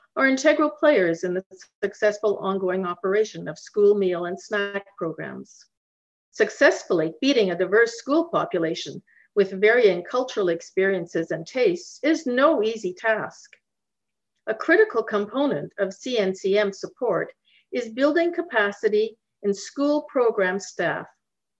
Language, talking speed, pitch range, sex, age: English, 120 wpm, 195-275 Hz, female, 50-69